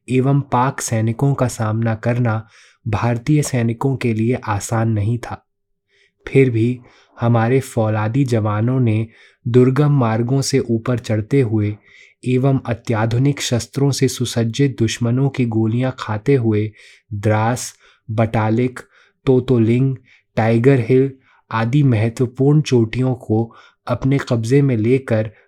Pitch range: 110-130 Hz